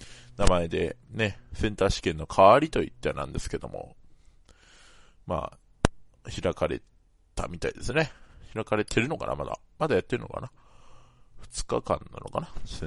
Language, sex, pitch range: Japanese, male, 80-115 Hz